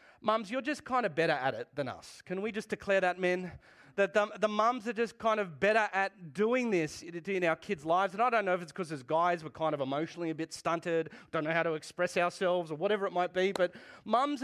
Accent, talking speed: Australian, 260 wpm